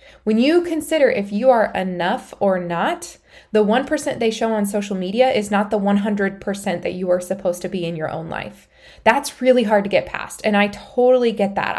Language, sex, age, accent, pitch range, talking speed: English, female, 20-39, American, 190-235 Hz, 210 wpm